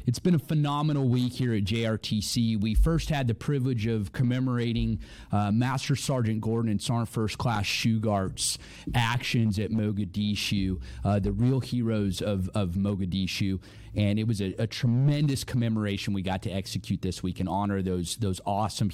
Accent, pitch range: American, 105-125 Hz